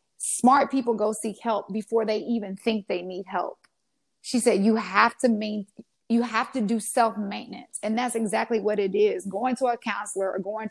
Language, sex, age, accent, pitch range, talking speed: English, female, 30-49, American, 200-240 Hz, 205 wpm